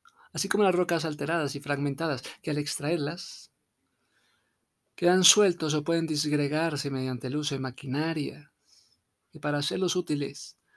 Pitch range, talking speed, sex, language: 140-175 Hz, 135 wpm, male, Spanish